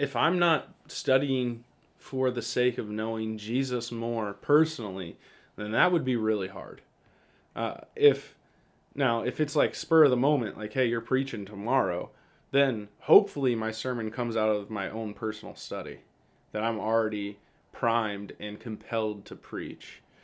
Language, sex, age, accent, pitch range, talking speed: English, male, 20-39, American, 105-125 Hz, 155 wpm